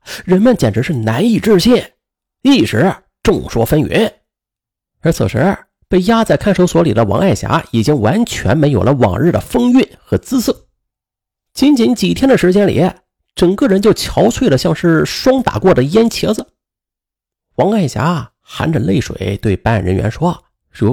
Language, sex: Chinese, male